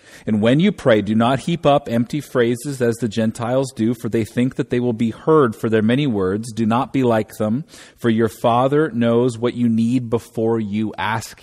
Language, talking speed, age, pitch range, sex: English, 215 wpm, 30-49, 105-130 Hz, male